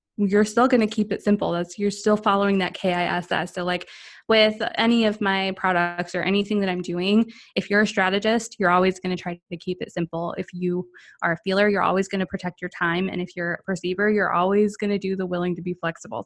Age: 20-39